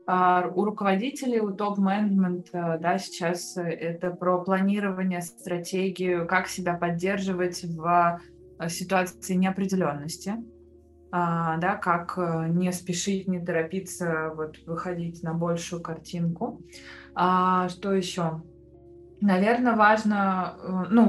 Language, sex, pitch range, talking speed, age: Russian, female, 170-190 Hz, 90 wpm, 20-39